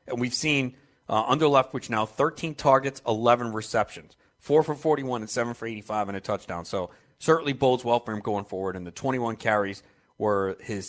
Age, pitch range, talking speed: 40-59, 105-130 Hz, 200 wpm